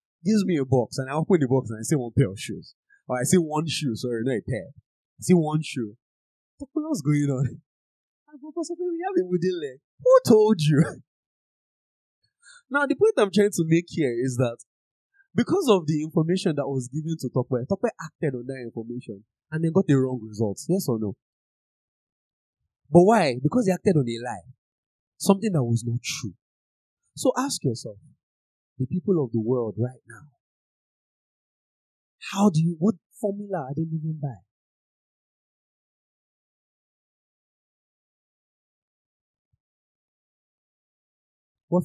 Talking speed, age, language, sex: 160 wpm, 20-39, English, male